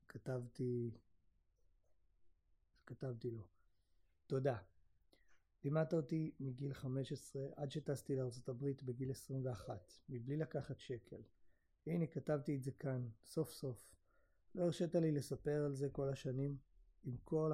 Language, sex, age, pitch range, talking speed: Hebrew, male, 30-49, 125-145 Hz, 115 wpm